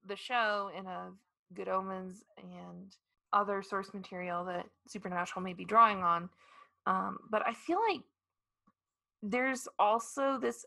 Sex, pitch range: female, 190-235 Hz